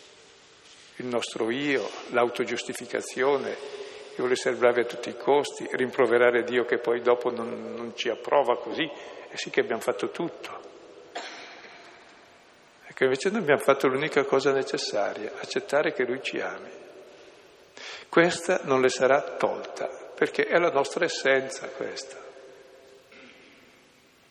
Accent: native